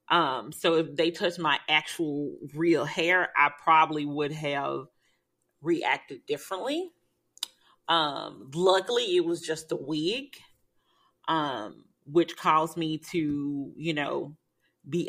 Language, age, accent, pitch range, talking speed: English, 30-49, American, 145-165 Hz, 120 wpm